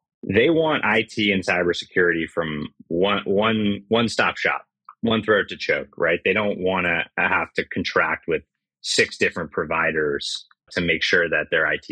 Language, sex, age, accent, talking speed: English, male, 30-49, American, 160 wpm